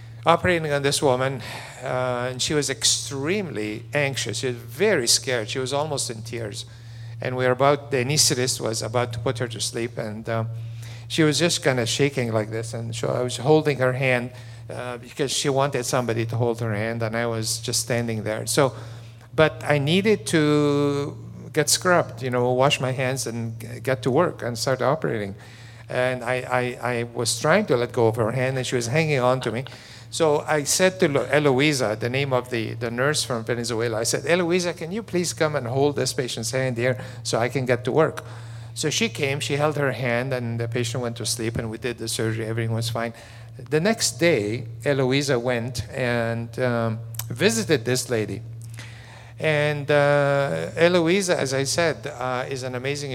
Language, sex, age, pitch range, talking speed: English, male, 50-69, 115-140 Hz, 200 wpm